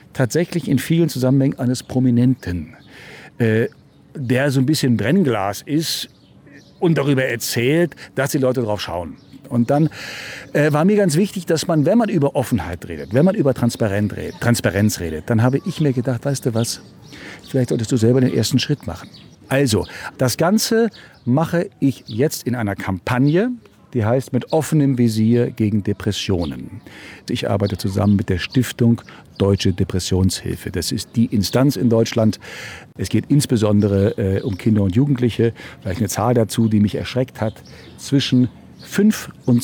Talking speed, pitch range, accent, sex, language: 160 wpm, 105-140 Hz, German, male, German